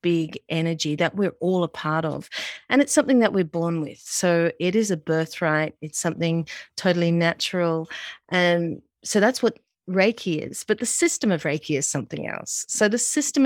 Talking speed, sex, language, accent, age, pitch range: 185 wpm, female, English, Australian, 40-59, 165-205 Hz